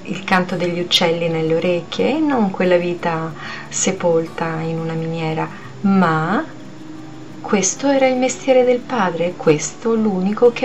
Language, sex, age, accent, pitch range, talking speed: Italian, female, 30-49, native, 165-205 Hz, 130 wpm